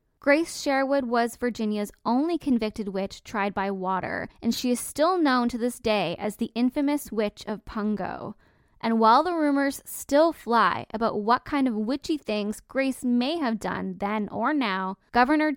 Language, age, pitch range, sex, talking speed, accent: English, 10-29, 210-265 Hz, female, 170 wpm, American